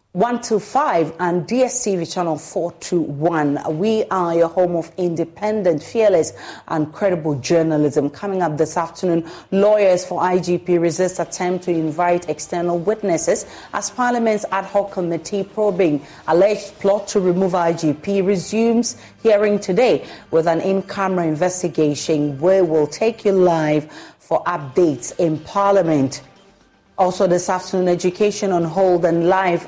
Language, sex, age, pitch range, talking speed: English, female, 30-49, 160-195 Hz, 130 wpm